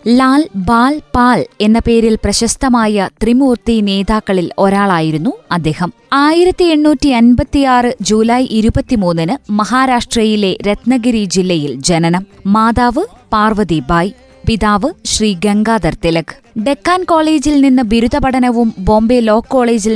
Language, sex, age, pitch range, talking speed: Malayalam, female, 20-39, 205-255 Hz, 100 wpm